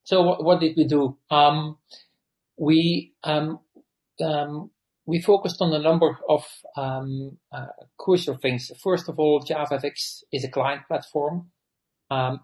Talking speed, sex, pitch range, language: 135 wpm, male, 130-150 Hz, English